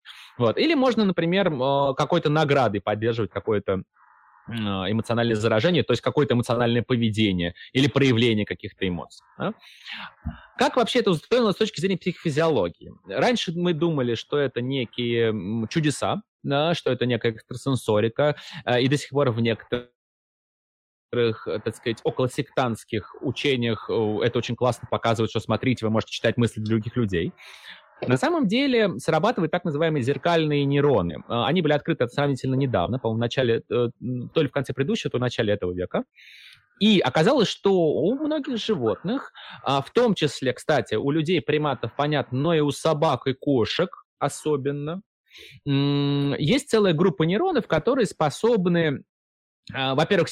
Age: 20-39